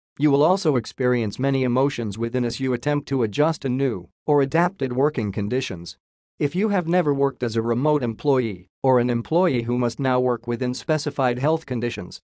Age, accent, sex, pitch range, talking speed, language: 40-59, American, male, 115-150 Hz, 185 wpm, English